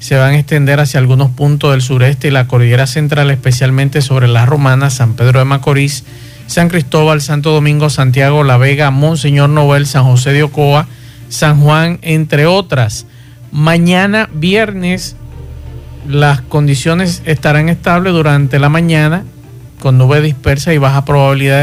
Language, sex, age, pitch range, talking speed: Spanish, male, 50-69, 130-155 Hz, 145 wpm